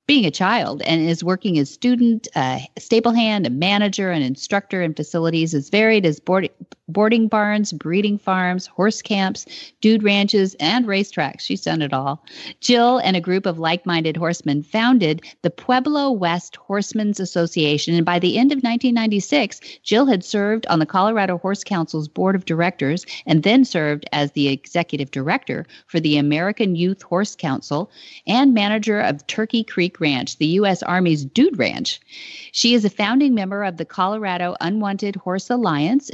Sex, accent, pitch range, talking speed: female, American, 160-220 Hz, 165 wpm